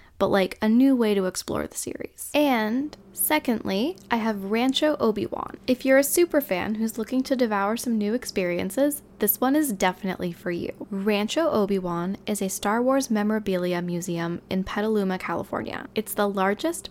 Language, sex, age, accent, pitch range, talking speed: English, female, 10-29, American, 185-240 Hz, 165 wpm